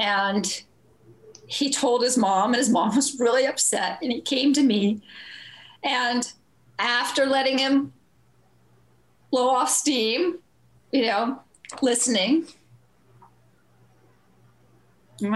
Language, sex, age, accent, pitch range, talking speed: English, female, 40-59, American, 180-250 Hz, 105 wpm